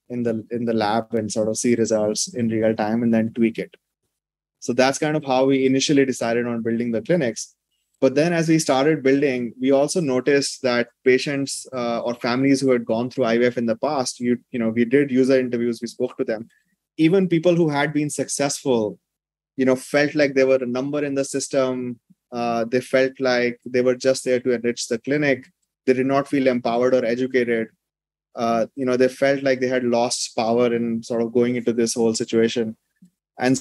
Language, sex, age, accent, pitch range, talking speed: English, male, 20-39, Indian, 115-135 Hz, 210 wpm